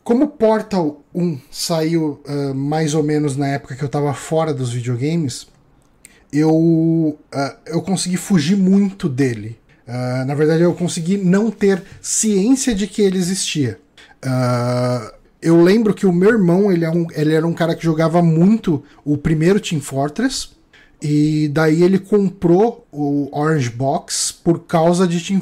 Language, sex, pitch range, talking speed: Portuguese, male, 140-185 Hz, 140 wpm